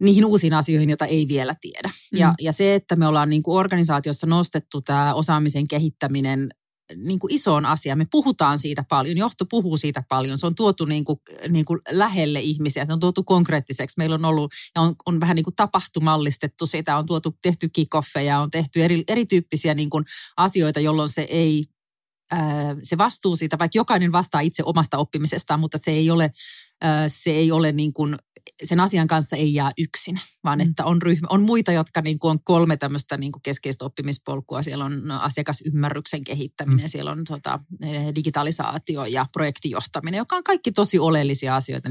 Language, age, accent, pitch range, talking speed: Finnish, 30-49, native, 145-175 Hz, 175 wpm